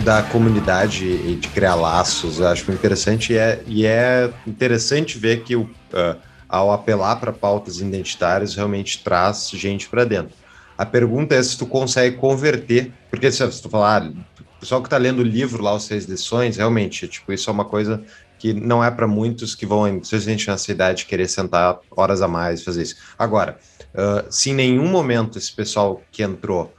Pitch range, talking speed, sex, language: 105-130 Hz, 195 wpm, male, Portuguese